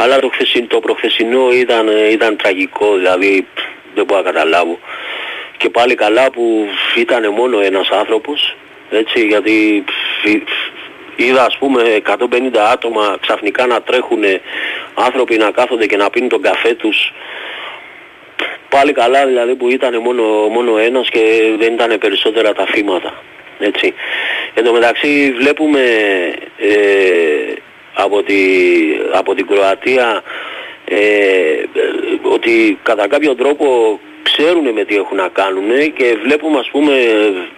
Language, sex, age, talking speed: Greek, male, 30-49, 135 wpm